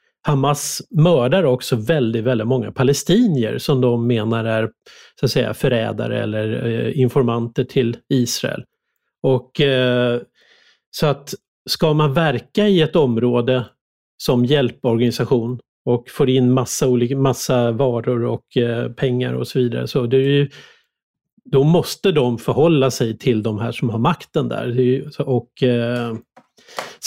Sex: male